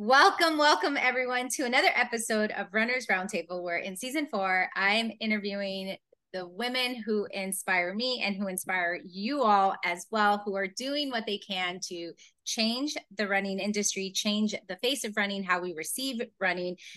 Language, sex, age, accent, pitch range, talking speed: English, female, 20-39, American, 205-285 Hz, 165 wpm